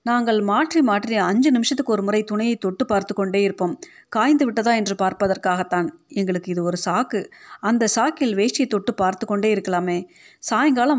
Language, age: Tamil, 30-49